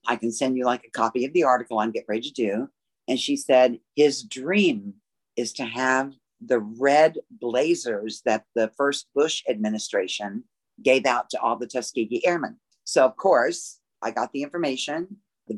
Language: English